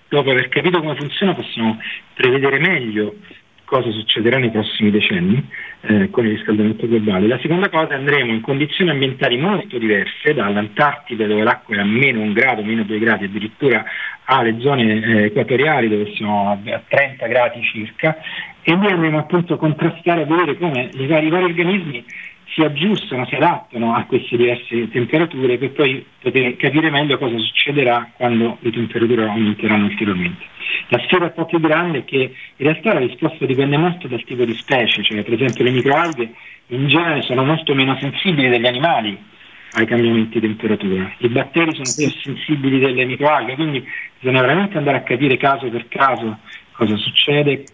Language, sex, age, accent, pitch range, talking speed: Italian, male, 40-59, native, 115-150 Hz, 175 wpm